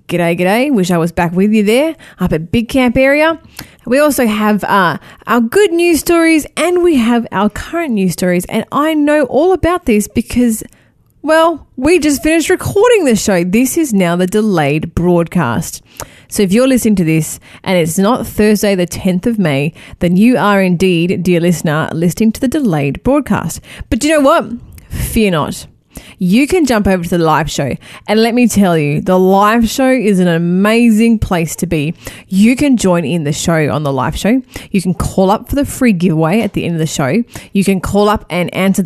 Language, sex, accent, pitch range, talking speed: English, female, Australian, 180-260 Hz, 205 wpm